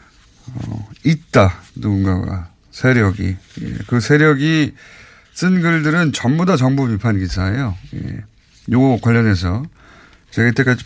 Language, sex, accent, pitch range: Korean, male, native, 105-150 Hz